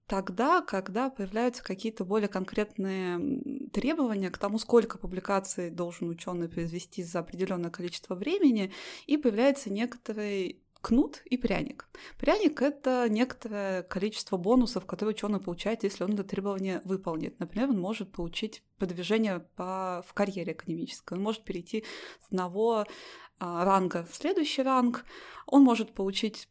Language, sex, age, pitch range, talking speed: Russian, female, 20-39, 185-230 Hz, 130 wpm